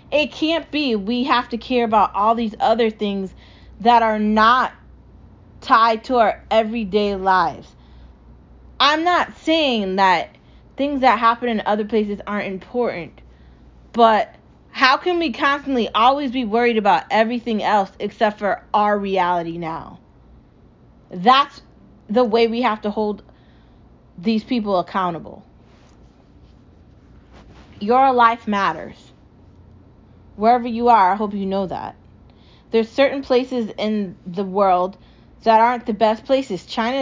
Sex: female